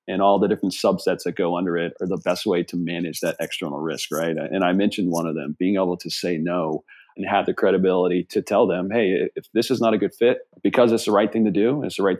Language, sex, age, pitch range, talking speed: English, male, 40-59, 90-110 Hz, 270 wpm